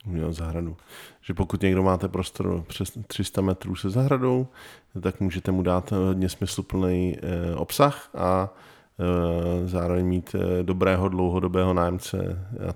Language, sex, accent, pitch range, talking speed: Czech, male, native, 90-105 Hz, 120 wpm